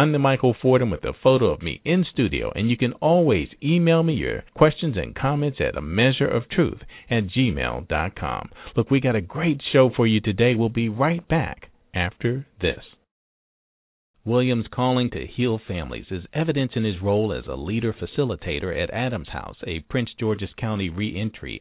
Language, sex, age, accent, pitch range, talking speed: English, male, 50-69, American, 95-135 Hz, 185 wpm